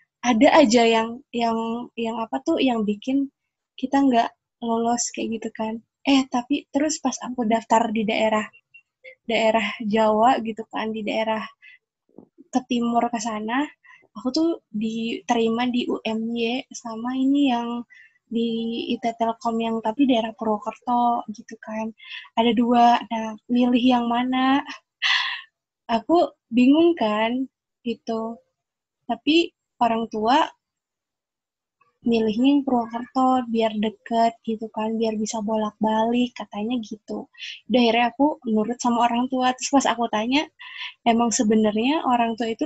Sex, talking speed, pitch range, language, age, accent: female, 125 wpm, 225-260 Hz, Indonesian, 20-39, native